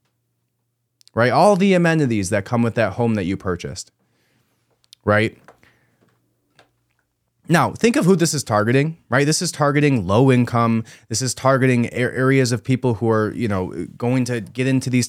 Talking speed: 165 wpm